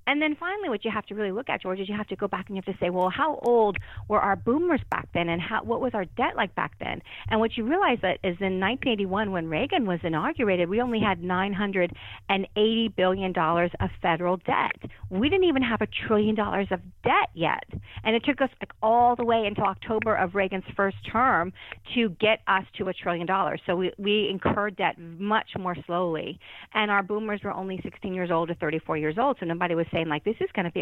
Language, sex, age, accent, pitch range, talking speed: English, female, 40-59, American, 175-215 Hz, 235 wpm